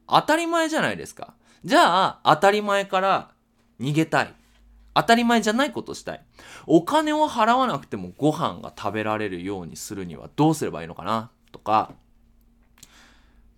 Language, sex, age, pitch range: Japanese, male, 20-39, 110-180 Hz